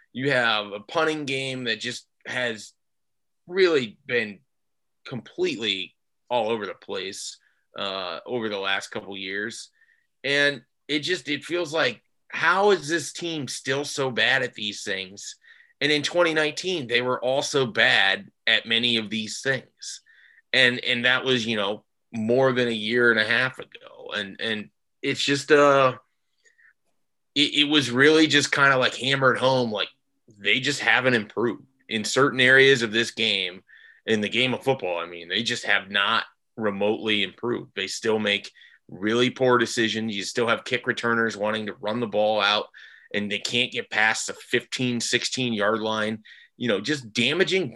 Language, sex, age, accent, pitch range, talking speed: English, male, 30-49, American, 110-145 Hz, 170 wpm